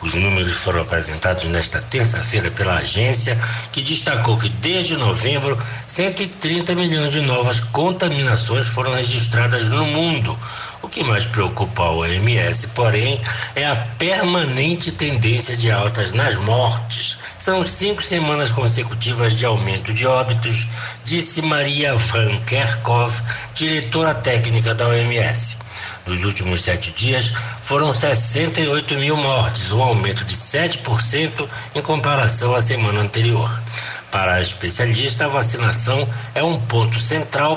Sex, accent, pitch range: male, Brazilian, 115-135 Hz